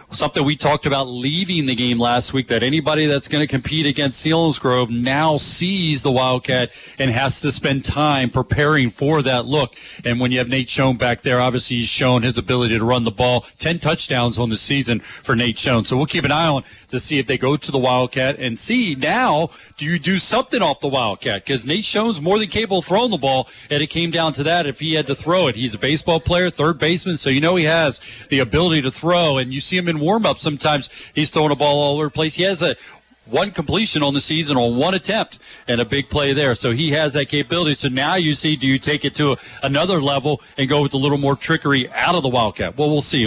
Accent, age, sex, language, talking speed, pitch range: American, 40-59, male, English, 250 wpm, 125-155 Hz